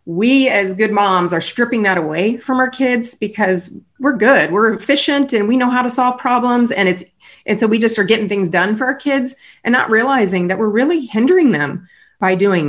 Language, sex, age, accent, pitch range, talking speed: English, female, 30-49, American, 180-235 Hz, 220 wpm